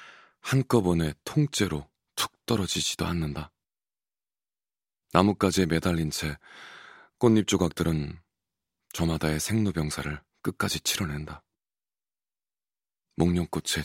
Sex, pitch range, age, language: male, 75-95 Hz, 30-49, Korean